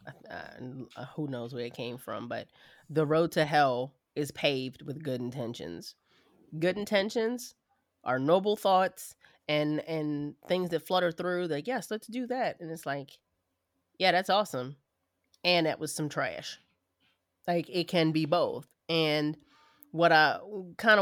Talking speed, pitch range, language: 150 wpm, 135-185 Hz, English